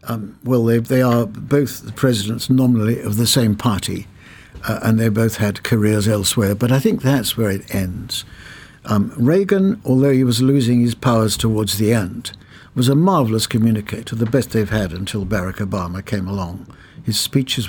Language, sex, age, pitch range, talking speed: English, male, 60-79, 105-160 Hz, 175 wpm